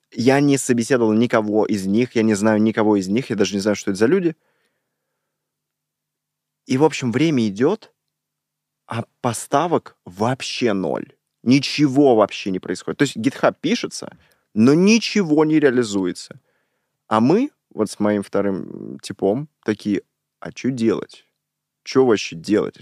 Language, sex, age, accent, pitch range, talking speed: Russian, male, 20-39, native, 100-130 Hz, 145 wpm